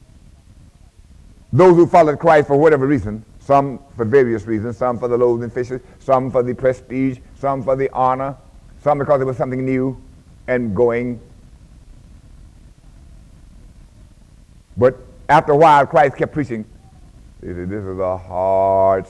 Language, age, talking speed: English, 60-79, 140 wpm